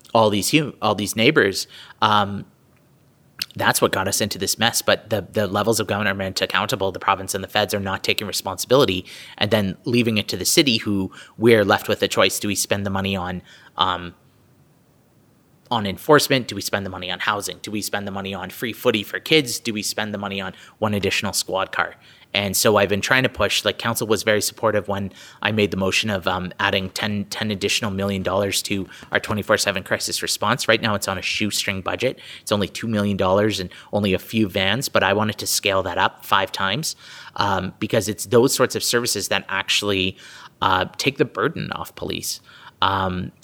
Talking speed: 205 wpm